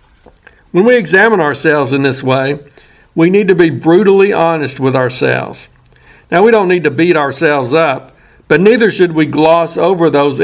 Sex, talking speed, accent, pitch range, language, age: male, 170 wpm, American, 140-175 Hz, English, 60-79